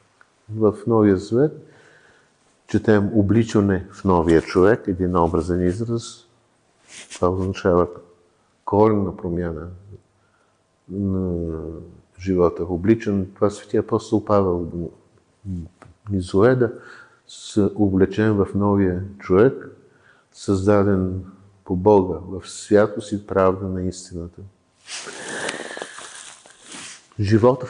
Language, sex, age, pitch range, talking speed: Bulgarian, male, 50-69, 95-115 Hz, 85 wpm